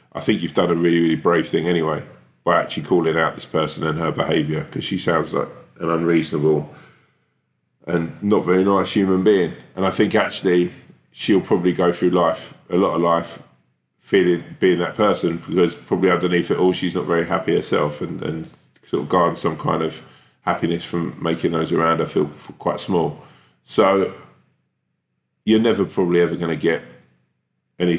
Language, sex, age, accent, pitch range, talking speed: English, male, 20-39, British, 80-95 Hz, 180 wpm